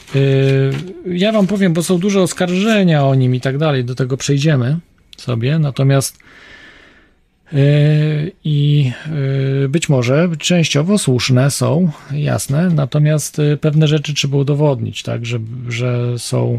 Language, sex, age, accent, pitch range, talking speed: Polish, male, 40-59, native, 125-155 Hz, 120 wpm